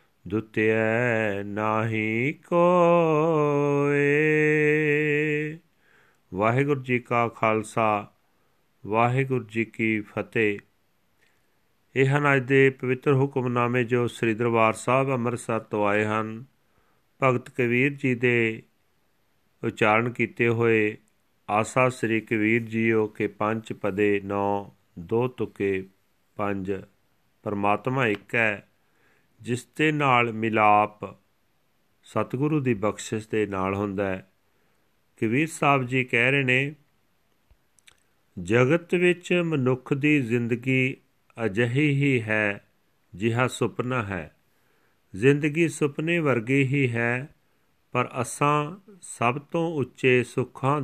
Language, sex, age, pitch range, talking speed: Punjabi, male, 40-59, 110-140 Hz, 100 wpm